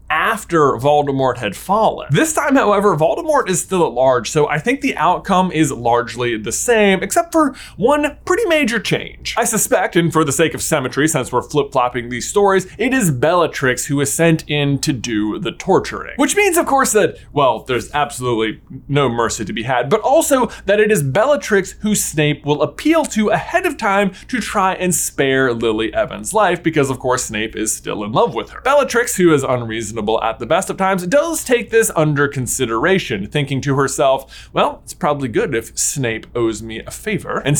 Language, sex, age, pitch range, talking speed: English, male, 20-39, 135-210 Hz, 195 wpm